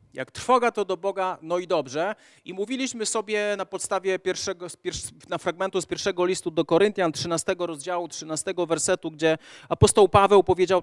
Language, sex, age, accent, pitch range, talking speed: Polish, male, 30-49, native, 155-200 Hz, 160 wpm